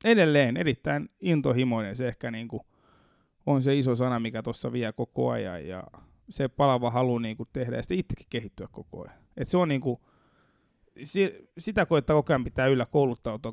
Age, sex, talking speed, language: 30-49, male, 175 wpm, Finnish